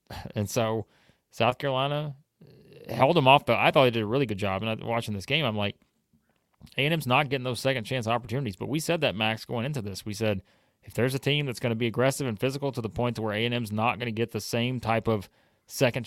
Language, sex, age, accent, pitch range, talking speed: English, male, 30-49, American, 105-130 Hz, 245 wpm